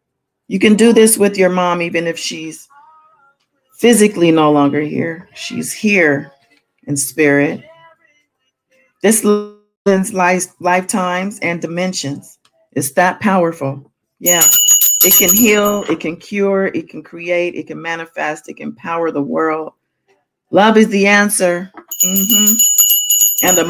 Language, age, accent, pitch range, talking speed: English, 40-59, American, 175-235 Hz, 130 wpm